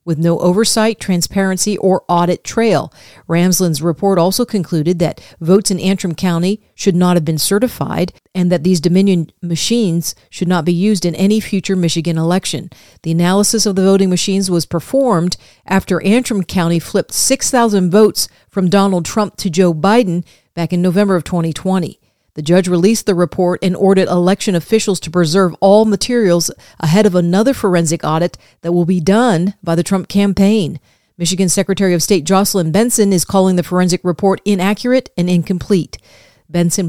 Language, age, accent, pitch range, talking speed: English, 50-69, American, 170-200 Hz, 165 wpm